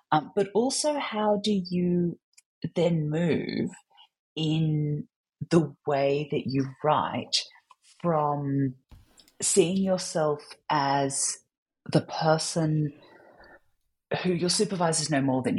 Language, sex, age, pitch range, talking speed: English, female, 40-59, 140-215 Hz, 100 wpm